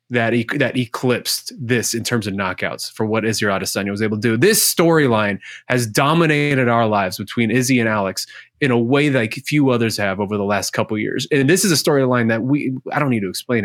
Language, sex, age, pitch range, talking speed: English, male, 20-39, 115-150 Hz, 235 wpm